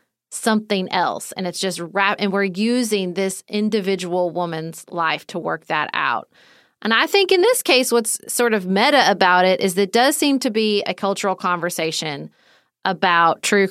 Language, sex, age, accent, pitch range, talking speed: English, female, 30-49, American, 180-230 Hz, 175 wpm